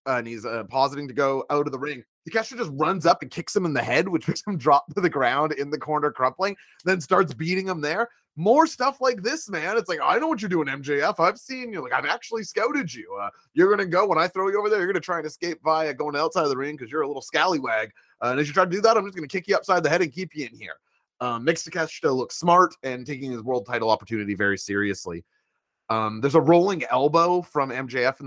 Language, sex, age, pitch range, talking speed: English, male, 30-49, 125-185 Hz, 275 wpm